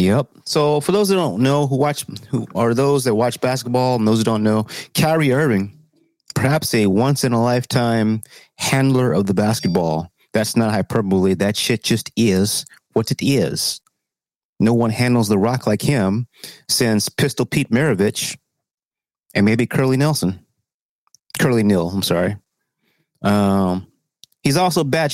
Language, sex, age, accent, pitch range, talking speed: English, male, 30-49, American, 120-185 Hz, 155 wpm